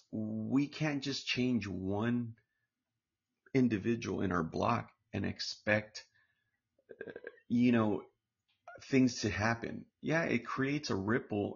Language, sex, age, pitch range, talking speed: English, male, 30-49, 100-120 Hz, 110 wpm